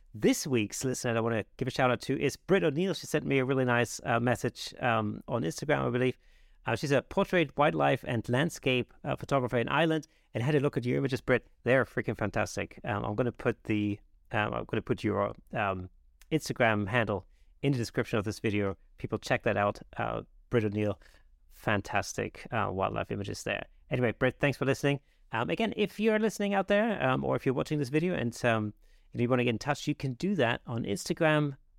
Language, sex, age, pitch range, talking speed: English, male, 30-49, 110-145 Hz, 220 wpm